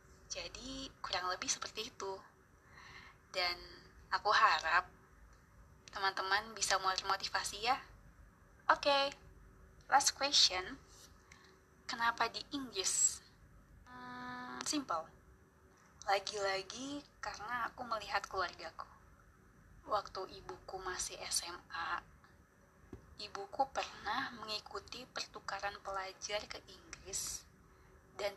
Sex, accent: female, native